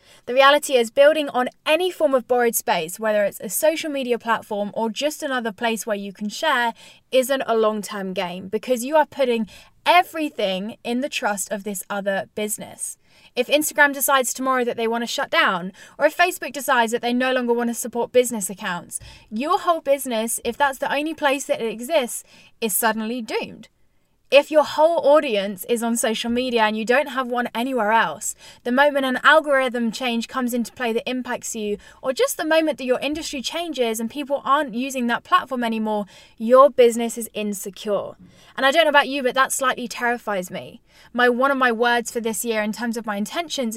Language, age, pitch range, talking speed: English, 10-29, 220-275 Hz, 200 wpm